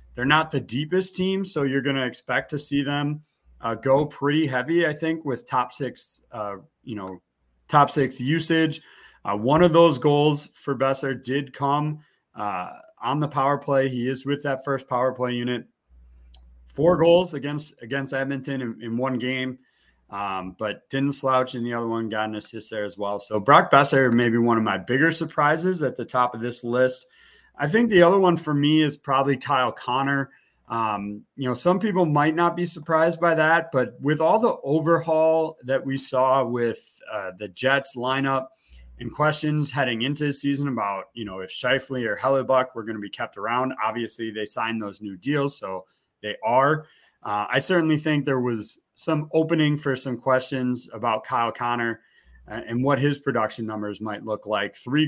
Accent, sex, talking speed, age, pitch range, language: American, male, 190 wpm, 30-49, 120-150 Hz, English